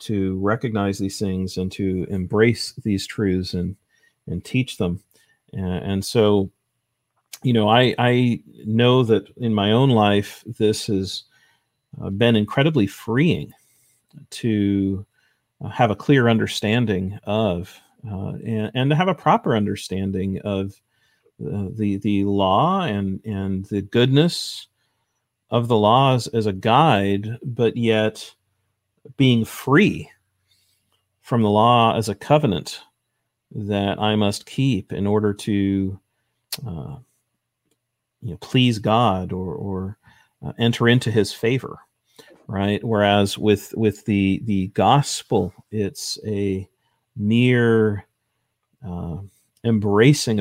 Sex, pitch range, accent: male, 100-120 Hz, American